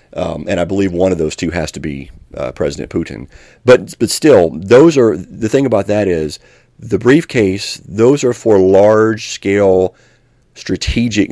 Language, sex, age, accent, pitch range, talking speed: English, male, 40-59, American, 80-100 Hz, 165 wpm